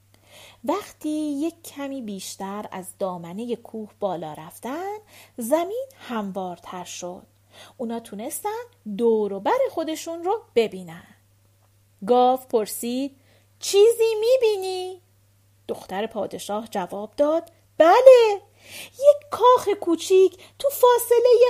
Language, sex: Persian, female